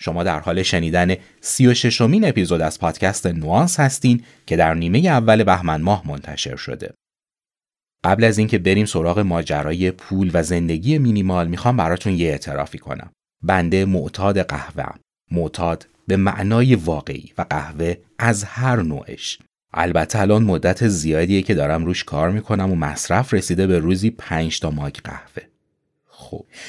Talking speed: 145 wpm